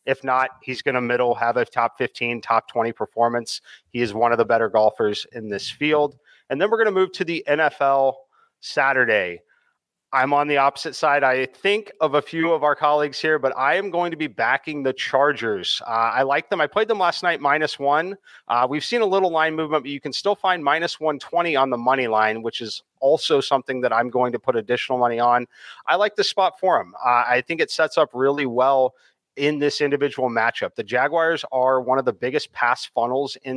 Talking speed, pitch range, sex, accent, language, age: 225 wpm, 120-150 Hz, male, American, English, 30-49